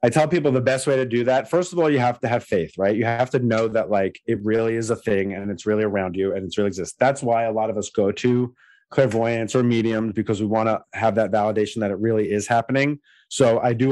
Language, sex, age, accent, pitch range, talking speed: English, male, 30-49, American, 110-140 Hz, 275 wpm